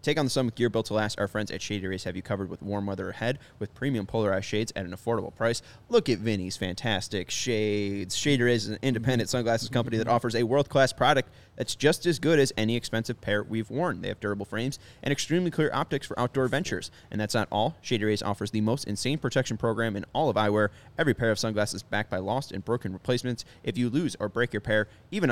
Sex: male